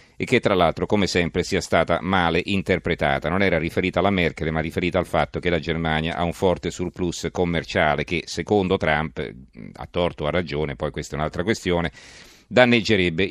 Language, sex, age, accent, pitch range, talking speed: Italian, male, 40-59, native, 85-110 Hz, 180 wpm